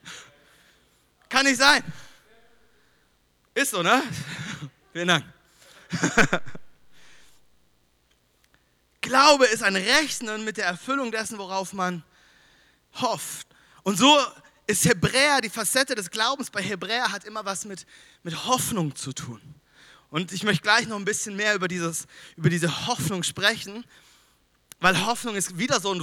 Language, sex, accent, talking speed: German, male, German, 130 wpm